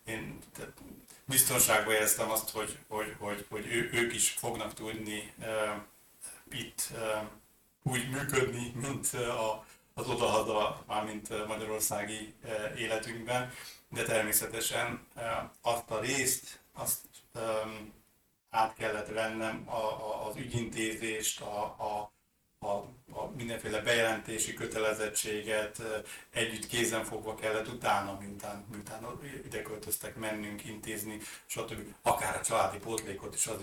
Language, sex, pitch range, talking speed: Hungarian, male, 105-115 Hz, 110 wpm